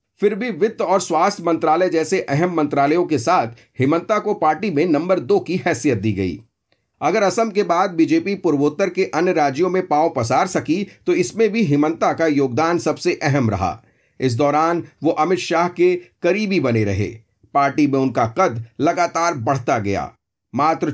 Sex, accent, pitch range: male, native, 135-185 Hz